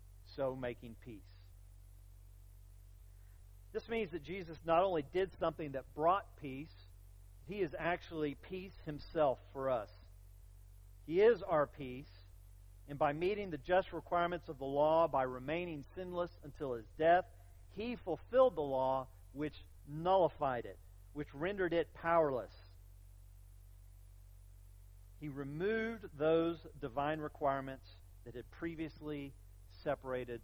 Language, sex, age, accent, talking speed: English, male, 40-59, American, 115 wpm